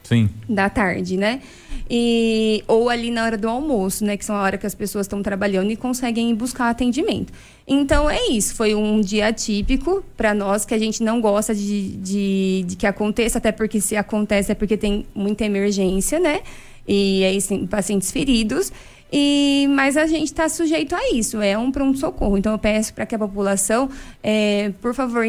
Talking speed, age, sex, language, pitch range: 185 wpm, 20-39, female, Portuguese, 205-255 Hz